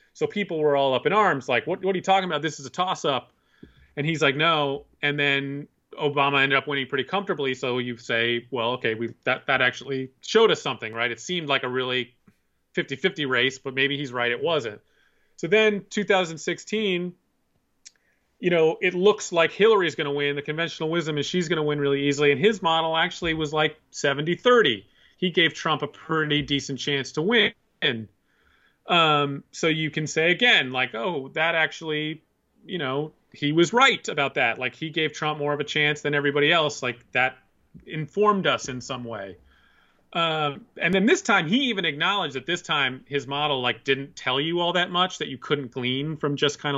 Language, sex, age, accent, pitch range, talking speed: English, male, 30-49, American, 135-175 Hz, 205 wpm